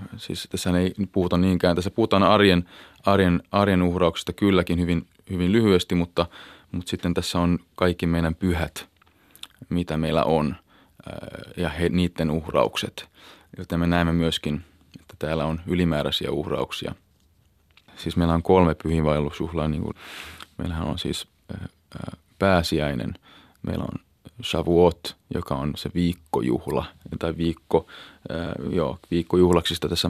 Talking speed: 115 wpm